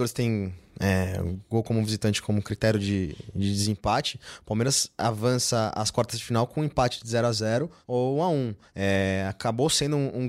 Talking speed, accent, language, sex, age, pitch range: 180 wpm, Brazilian, Portuguese, male, 20-39, 115-150 Hz